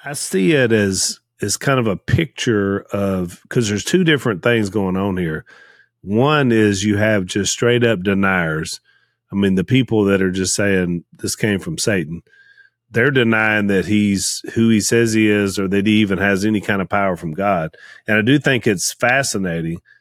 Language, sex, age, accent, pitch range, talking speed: English, male, 40-59, American, 95-115 Hz, 190 wpm